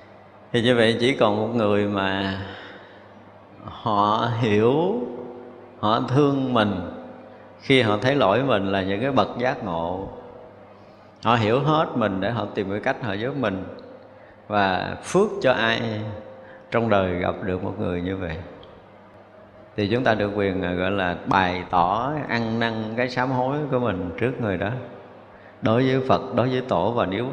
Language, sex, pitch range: Vietnamese, male, 100-125 Hz